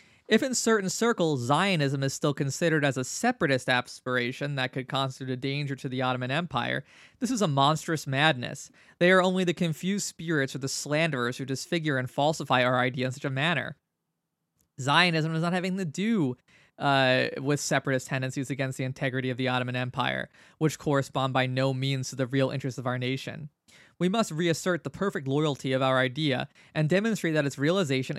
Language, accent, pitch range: English, American, 130-160 Hz